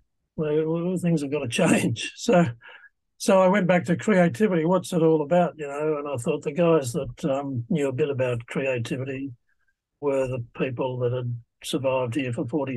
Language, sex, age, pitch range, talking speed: English, male, 60-79, 115-150 Hz, 190 wpm